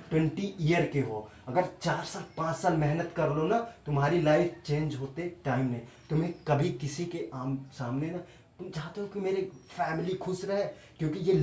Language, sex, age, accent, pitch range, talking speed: Hindi, male, 30-49, native, 145-205 Hz, 190 wpm